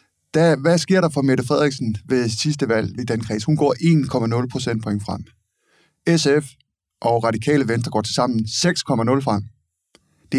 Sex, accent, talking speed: male, native, 160 wpm